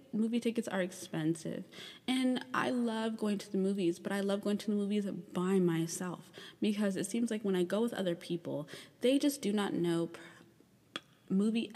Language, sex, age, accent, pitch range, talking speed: English, female, 20-39, American, 175-235 Hz, 185 wpm